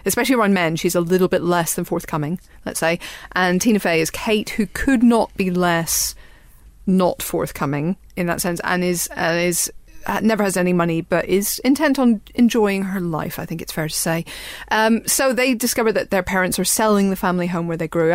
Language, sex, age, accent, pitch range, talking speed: English, female, 40-59, British, 175-220 Hz, 210 wpm